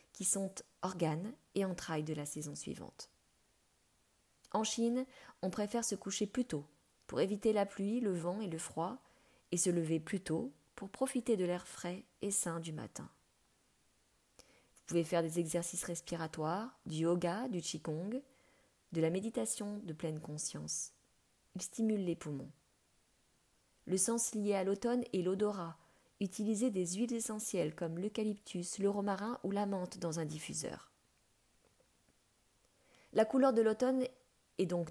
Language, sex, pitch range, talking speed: French, female, 170-220 Hz, 150 wpm